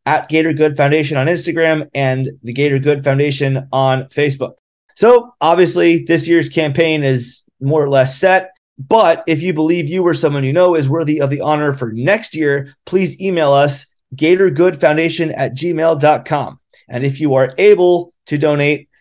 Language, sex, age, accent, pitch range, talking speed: English, male, 30-49, American, 140-170 Hz, 165 wpm